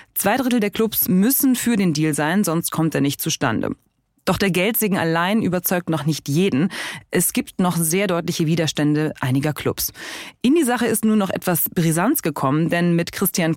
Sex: female